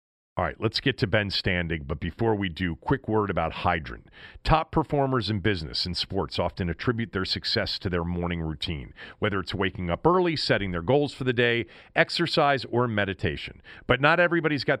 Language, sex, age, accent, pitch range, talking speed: English, male, 40-59, American, 100-145 Hz, 195 wpm